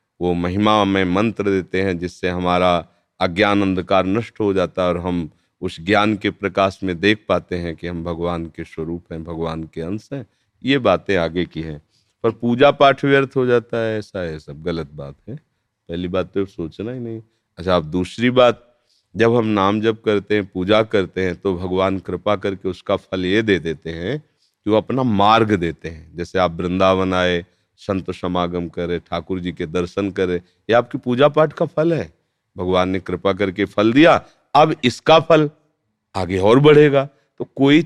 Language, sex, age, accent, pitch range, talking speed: Hindi, male, 40-59, native, 90-130 Hz, 195 wpm